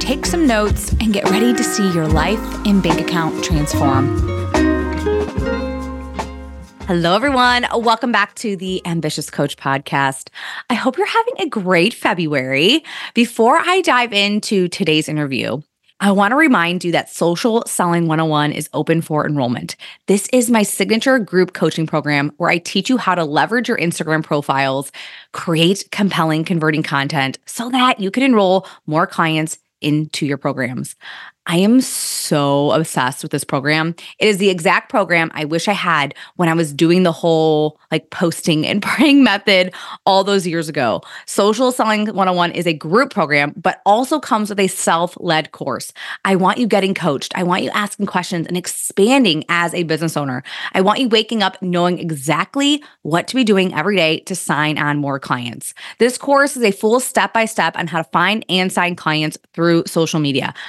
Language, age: English, 20-39